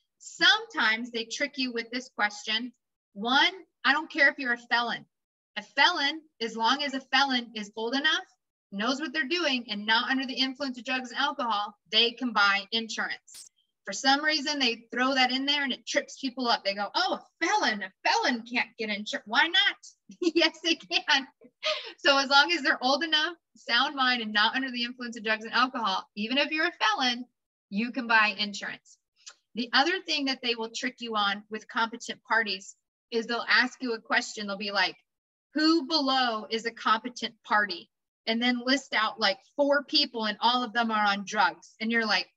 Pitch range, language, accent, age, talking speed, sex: 225-285 Hz, English, American, 30-49, 200 wpm, female